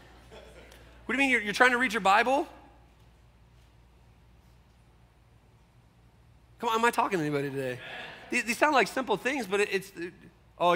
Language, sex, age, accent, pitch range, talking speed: English, male, 30-49, American, 135-185 Hz, 150 wpm